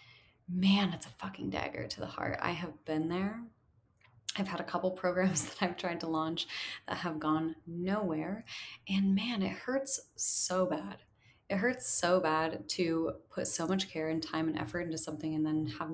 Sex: female